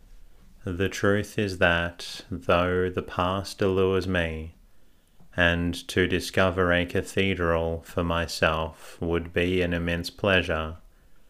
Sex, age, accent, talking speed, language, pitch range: male, 30-49, Australian, 110 wpm, English, 85-95 Hz